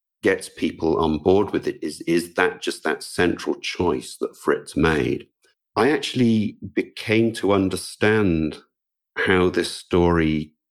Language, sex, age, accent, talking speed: English, male, 50-69, British, 135 wpm